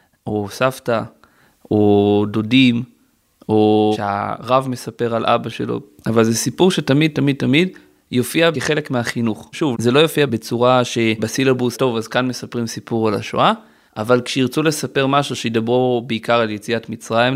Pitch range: 110-130 Hz